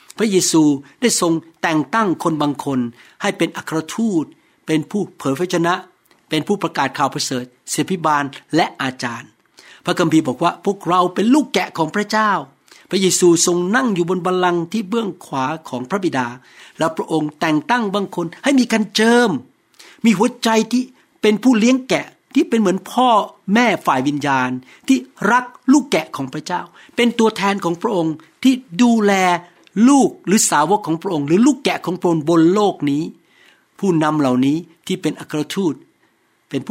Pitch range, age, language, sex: 155-215 Hz, 60-79, Thai, male